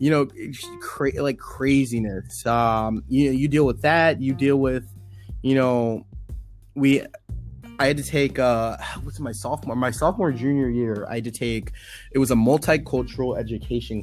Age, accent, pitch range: 20-39, American, 110-135 Hz